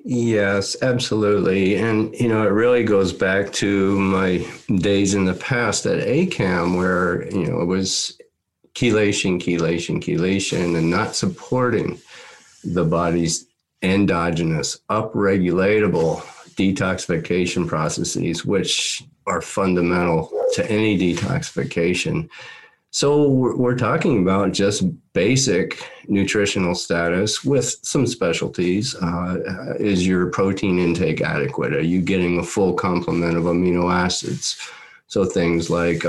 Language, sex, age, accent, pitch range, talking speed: English, male, 50-69, American, 85-100 Hz, 115 wpm